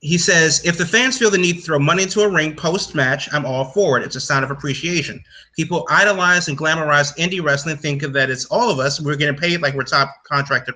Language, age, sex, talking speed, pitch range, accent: English, 30-49, male, 235 wpm, 140-170 Hz, American